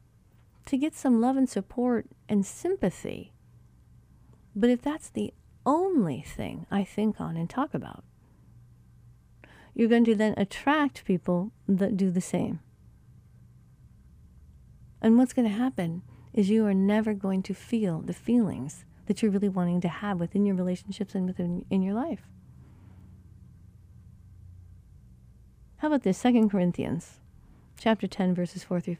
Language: English